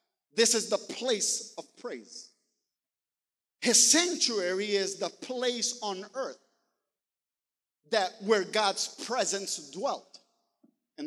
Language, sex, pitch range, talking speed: English, male, 220-300 Hz, 105 wpm